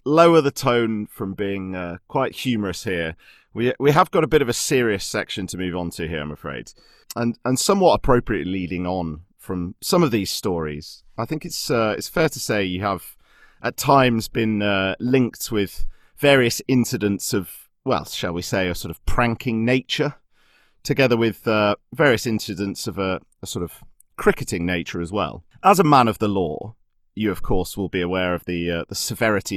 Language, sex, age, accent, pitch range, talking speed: English, male, 30-49, British, 90-120 Hz, 195 wpm